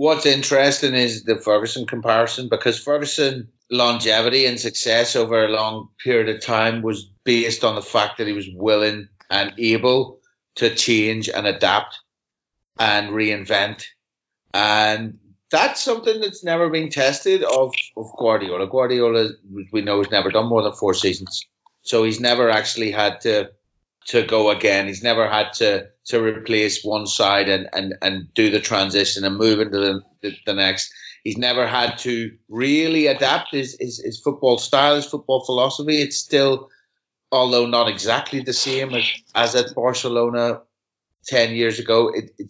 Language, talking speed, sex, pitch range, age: English, 160 wpm, male, 105-130 Hz, 30-49